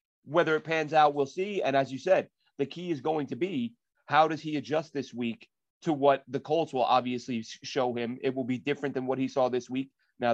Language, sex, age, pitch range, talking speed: English, male, 30-49, 125-155 Hz, 240 wpm